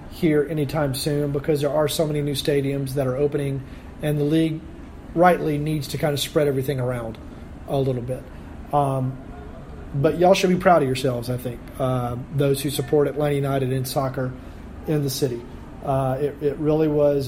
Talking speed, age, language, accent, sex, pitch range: 185 wpm, 40-59, English, American, male, 130-155 Hz